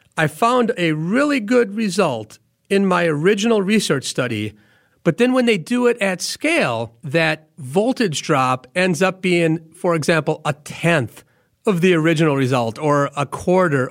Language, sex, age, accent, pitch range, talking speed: English, male, 40-59, American, 155-200 Hz, 155 wpm